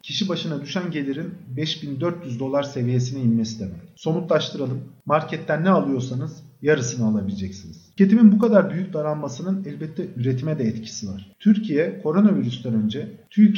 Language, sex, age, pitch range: Turkish, male, 40-59, 125-180 Hz